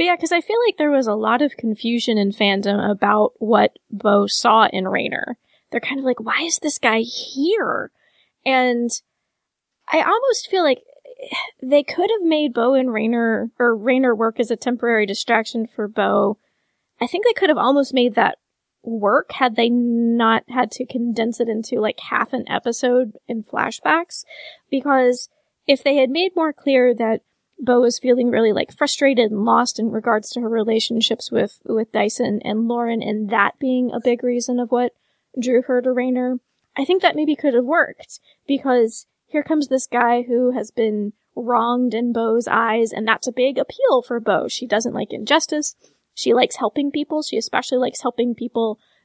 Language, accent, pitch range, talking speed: English, American, 230-280 Hz, 185 wpm